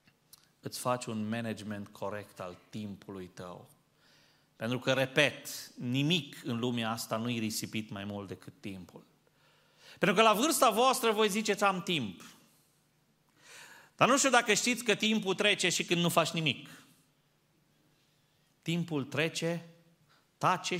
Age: 30-49